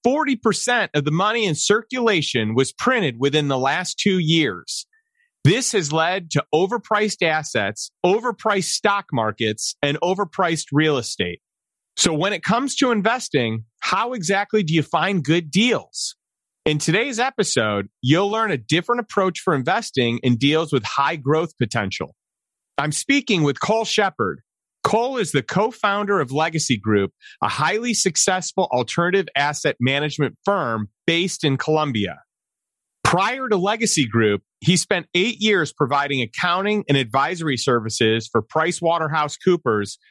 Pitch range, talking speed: 135-205 Hz, 135 wpm